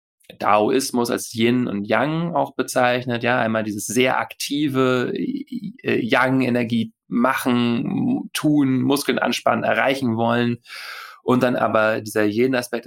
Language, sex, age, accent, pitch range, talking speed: German, male, 30-49, German, 110-130 Hz, 120 wpm